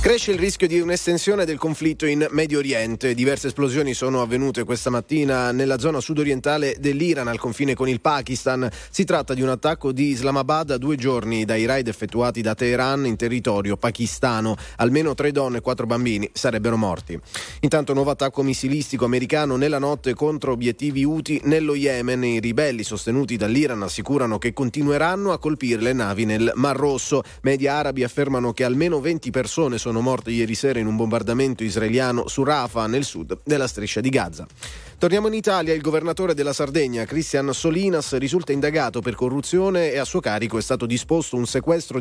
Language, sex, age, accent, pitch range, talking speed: Italian, male, 30-49, native, 120-150 Hz, 175 wpm